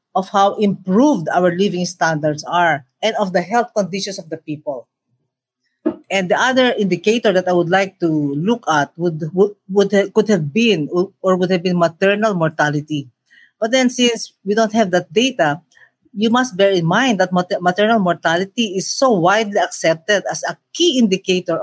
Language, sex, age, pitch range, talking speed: English, female, 50-69, 175-215 Hz, 165 wpm